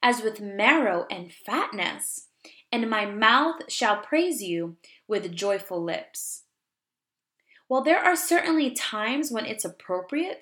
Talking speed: 125 wpm